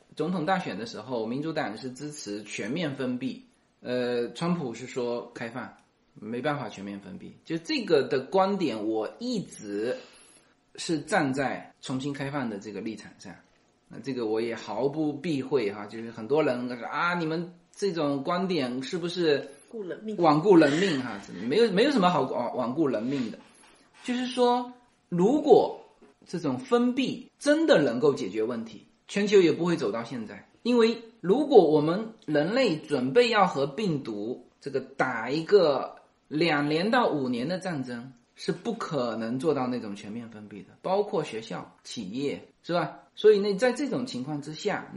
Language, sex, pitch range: Chinese, male, 135-225 Hz